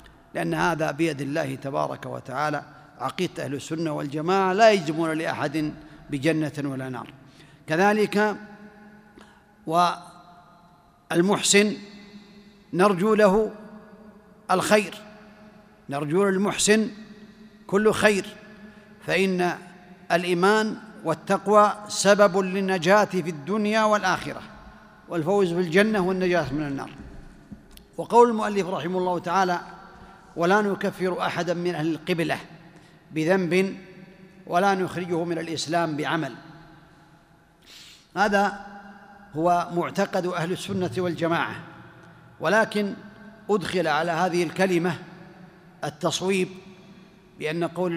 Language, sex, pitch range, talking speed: Arabic, male, 170-200 Hz, 90 wpm